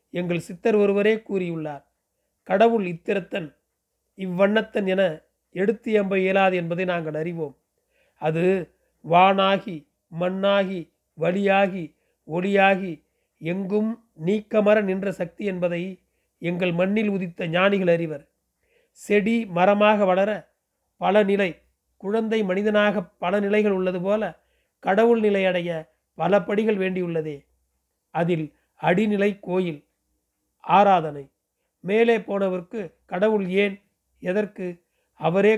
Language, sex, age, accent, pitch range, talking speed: Tamil, male, 40-59, native, 175-205 Hz, 90 wpm